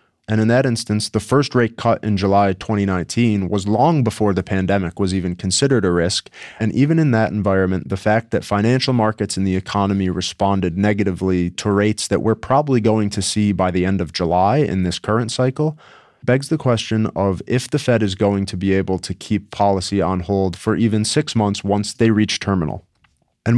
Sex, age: male, 20-39